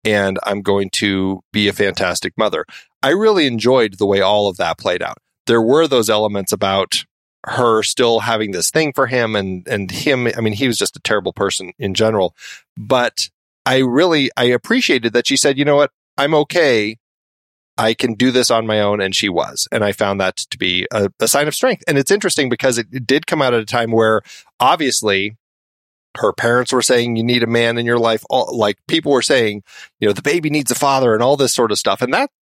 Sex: male